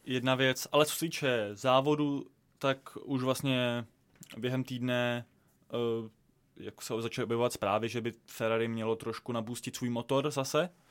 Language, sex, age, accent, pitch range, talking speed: Czech, male, 20-39, native, 115-130 Hz, 150 wpm